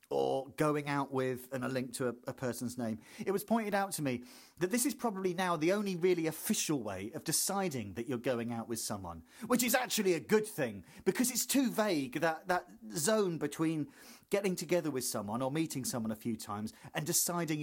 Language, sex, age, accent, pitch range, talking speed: English, male, 40-59, British, 130-185 Hz, 210 wpm